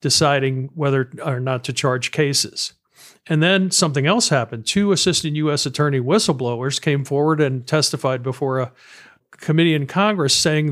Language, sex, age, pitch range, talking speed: English, male, 50-69, 135-165 Hz, 150 wpm